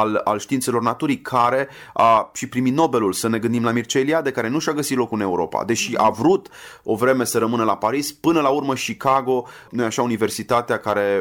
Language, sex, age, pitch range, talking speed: Romanian, male, 30-49, 105-125 Hz, 210 wpm